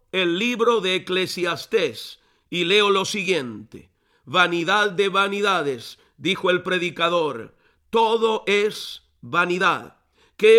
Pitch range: 185-235 Hz